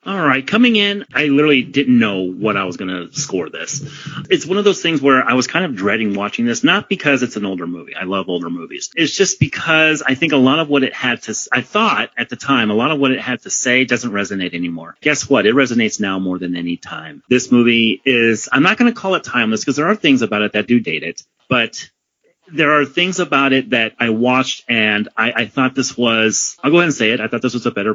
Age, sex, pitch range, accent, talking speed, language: 30-49, male, 115-155 Hz, American, 260 wpm, English